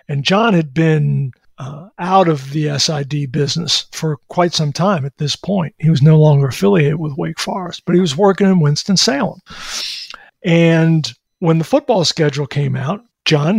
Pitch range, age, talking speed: 150-190 Hz, 50-69, 170 wpm